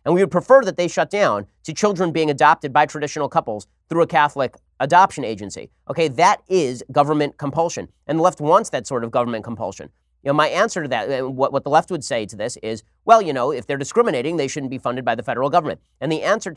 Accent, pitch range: American, 125-160 Hz